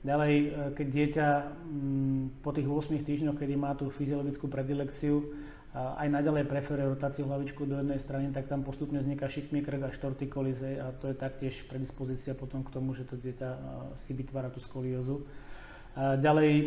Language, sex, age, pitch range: Czech, male, 30-49, 135-145 Hz